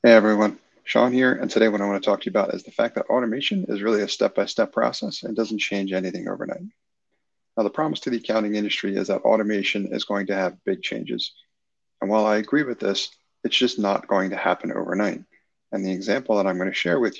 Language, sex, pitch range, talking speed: English, male, 95-115 Hz, 235 wpm